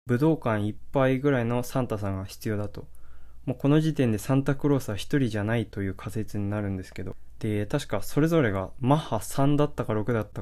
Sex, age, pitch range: male, 20-39, 105-140 Hz